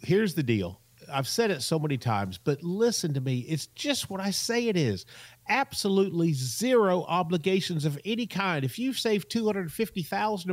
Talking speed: 170 wpm